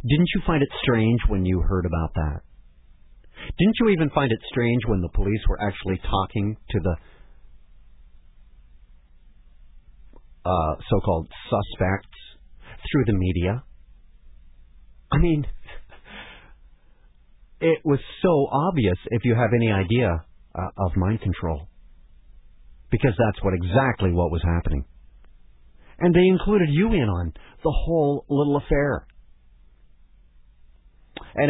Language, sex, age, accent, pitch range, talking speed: English, male, 40-59, American, 80-115 Hz, 120 wpm